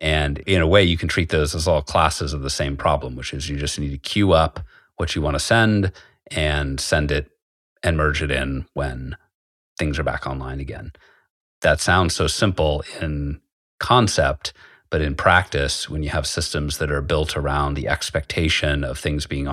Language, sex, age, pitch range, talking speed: English, male, 30-49, 70-85 Hz, 195 wpm